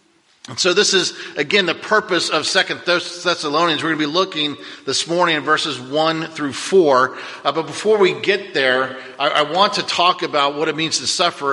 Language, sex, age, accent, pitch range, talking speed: English, male, 50-69, American, 150-175 Hz, 205 wpm